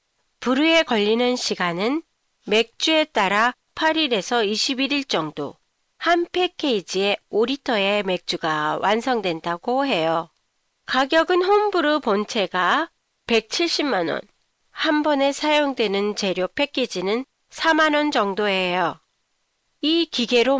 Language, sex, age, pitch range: Japanese, female, 40-59, 205-300 Hz